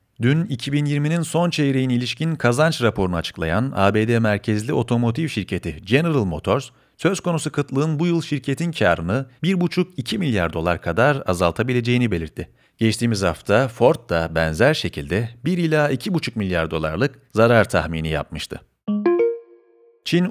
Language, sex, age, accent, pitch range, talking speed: Turkish, male, 40-59, native, 90-145 Hz, 125 wpm